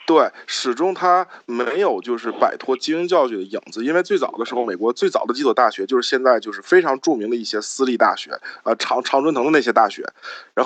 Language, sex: Chinese, male